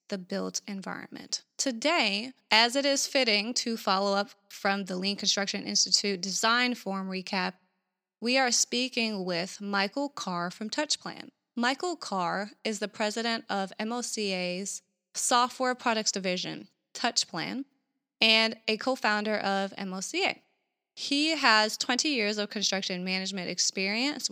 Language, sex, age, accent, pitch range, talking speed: English, female, 20-39, American, 195-240 Hz, 130 wpm